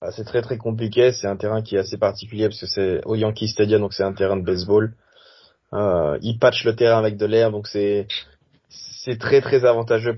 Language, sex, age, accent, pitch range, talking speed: French, male, 20-39, French, 110-130 Hz, 220 wpm